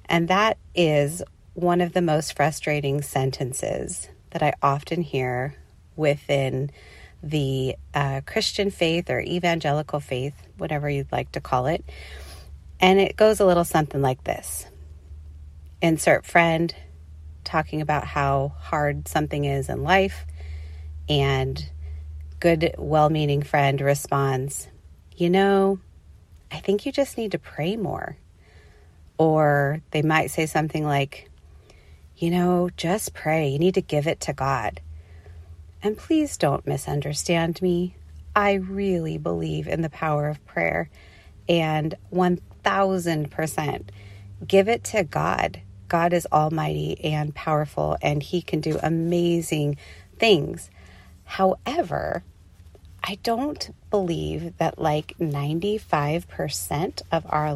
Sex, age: female, 30-49